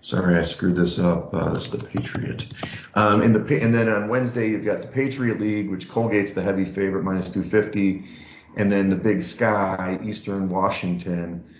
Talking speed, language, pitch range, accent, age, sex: 175 wpm, English, 95-110 Hz, American, 30-49, male